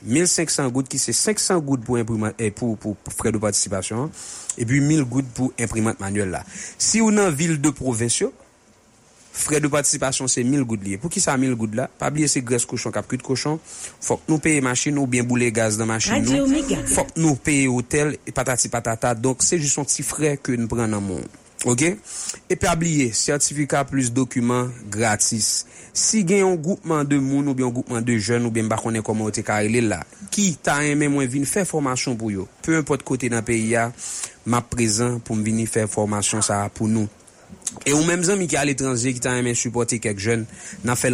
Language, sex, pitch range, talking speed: English, male, 115-145 Hz, 205 wpm